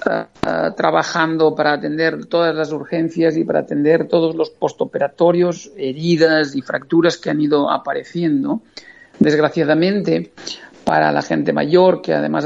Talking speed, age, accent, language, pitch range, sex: 125 wpm, 50-69, Spanish, Spanish, 150-175 Hz, male